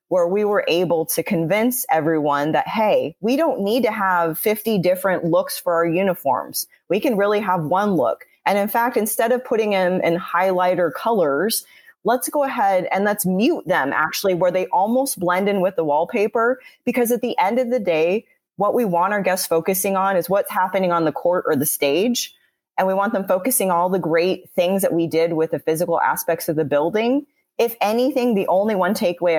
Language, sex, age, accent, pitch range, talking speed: English, female, 20-39, American, 165-210 Hz, 205 wpm